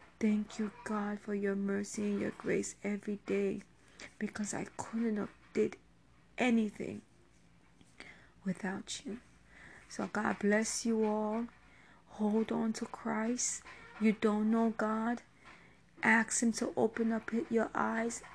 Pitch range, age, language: 195-220 Hz, 30-49, English